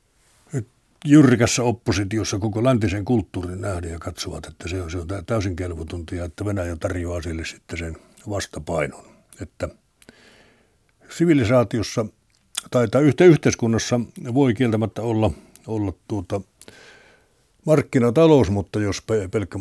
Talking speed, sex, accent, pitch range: 115 wpm, male, native, 95-120 Hz